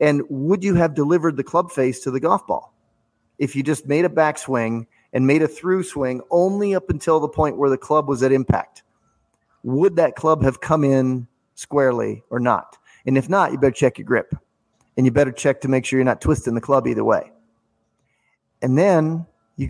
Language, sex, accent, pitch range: English, male, American, 130-155 Hz